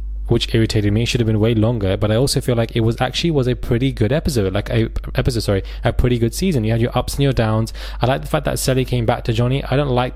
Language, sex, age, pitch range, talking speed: English, male, 20-39, 110-130 Hz, 295 wpm